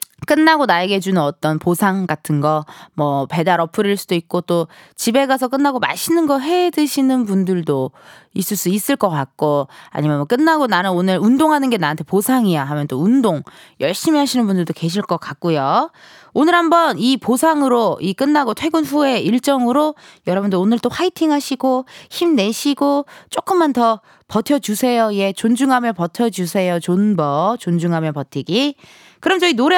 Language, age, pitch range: Korean, 20-39, 180-280 Hz